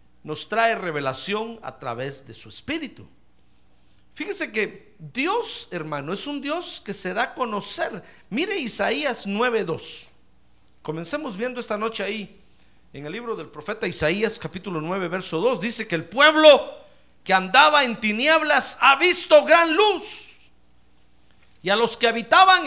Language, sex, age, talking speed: Spanish, male, 50-69, 145 wpm